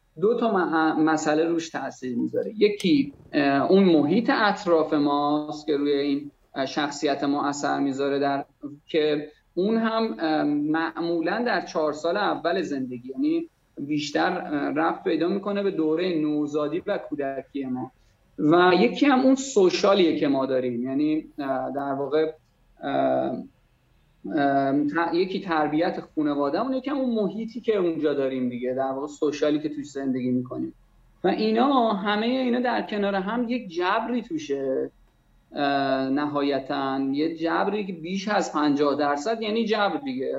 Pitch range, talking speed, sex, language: 145-205 Hz, 135 wpm, male, Persian